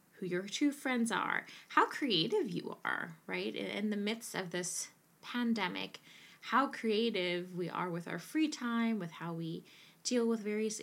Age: 20-39